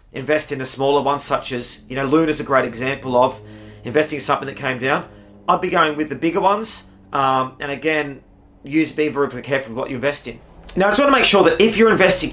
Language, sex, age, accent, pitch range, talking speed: English, male, 30-49, Australian, 135-165 Hz, 250 wpm